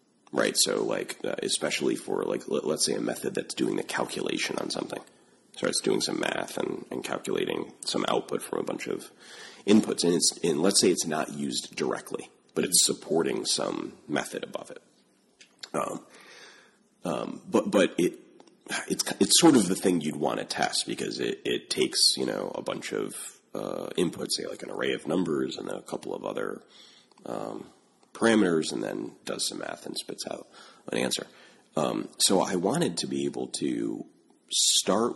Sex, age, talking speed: male, 30-49, 180 wpm